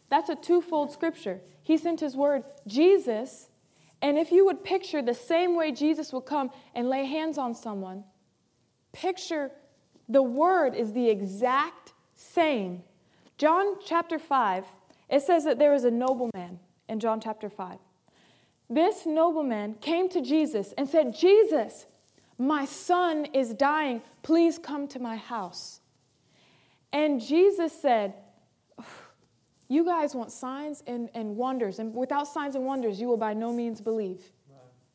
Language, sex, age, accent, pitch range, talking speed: English, female, 20-39, American, 245-330 Hz, 145 wpm